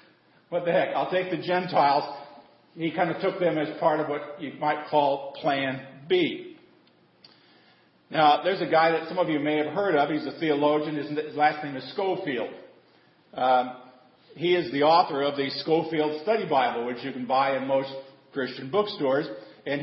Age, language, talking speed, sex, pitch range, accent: 50-69, English, 180 wpm, male, 140-170 Hz, American